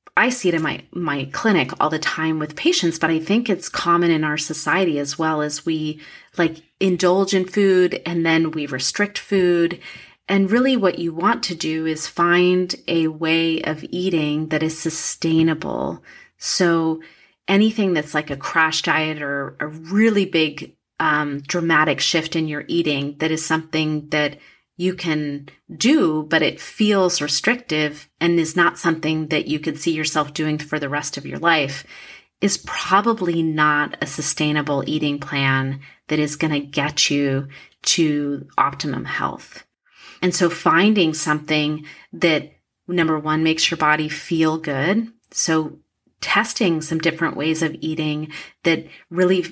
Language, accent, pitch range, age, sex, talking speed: English, American, 150-175 Hz, 30-49, female, 160 wpm